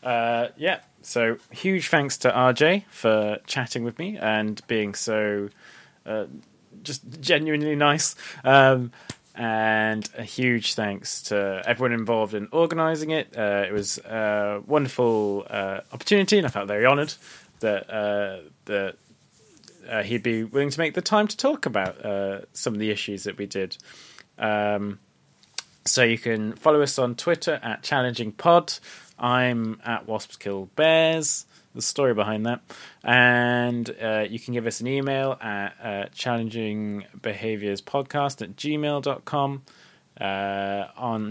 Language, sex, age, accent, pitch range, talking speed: English, male, 20-39, British, 105-130 Hz, 140 wpm